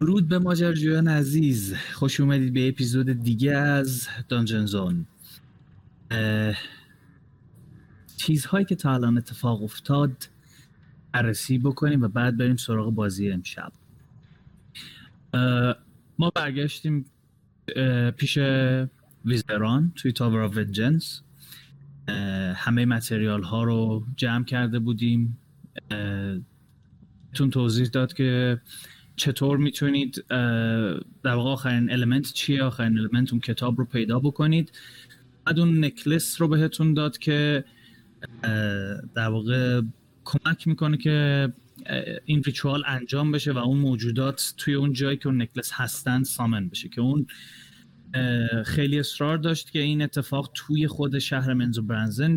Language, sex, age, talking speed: Persian, male, 30-49, 110 wpm